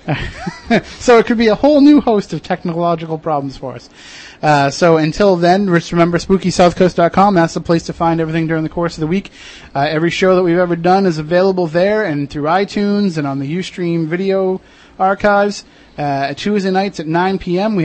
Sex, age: male, 30-49